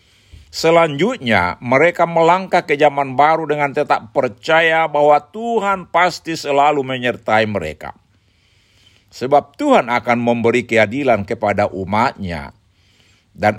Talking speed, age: 100 wpm, 50-69